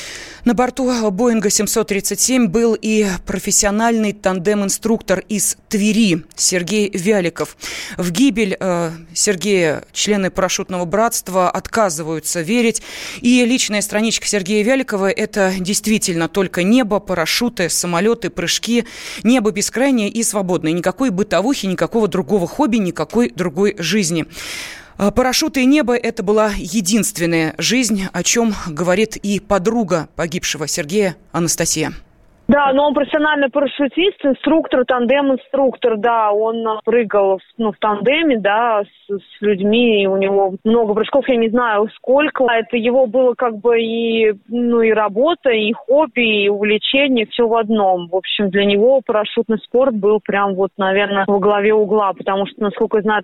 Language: Russian